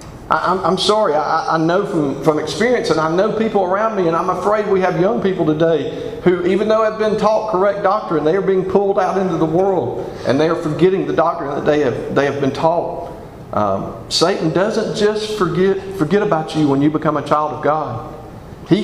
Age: 40-59